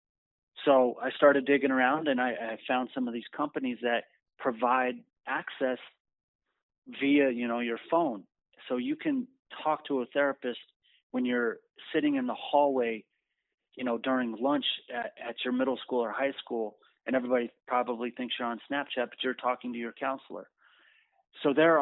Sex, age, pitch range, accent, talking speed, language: male, 30-49, 115-140 Hz, American, 170 wpm, English